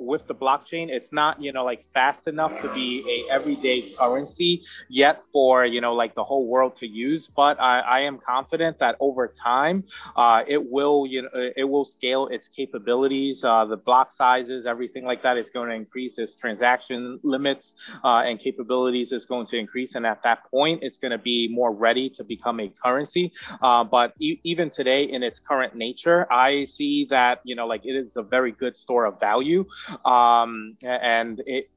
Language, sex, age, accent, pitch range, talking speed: English, male, 30-49, American, 120-140 Hz, 195 wpm